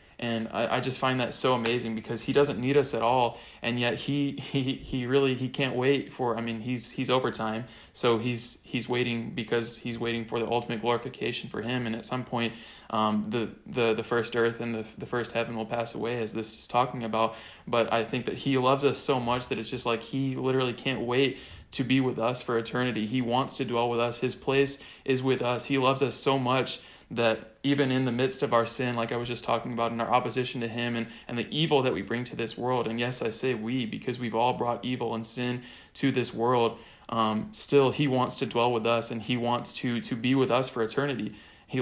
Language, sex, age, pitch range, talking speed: English, male, 20-39, 115-130 Hz, 240 wpm